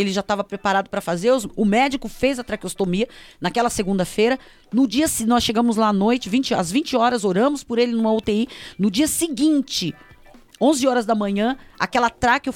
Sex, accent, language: female, Brazilian, Portuguese